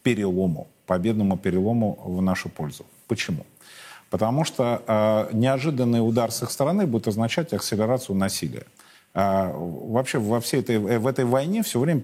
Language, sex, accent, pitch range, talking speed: Russian, male, native, 95-125 Hz, 130 wpm